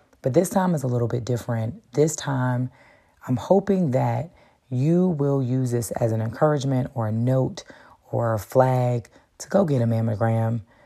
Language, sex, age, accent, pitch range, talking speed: English, female, 30-49, American, 115-130 Hz, 170 wpm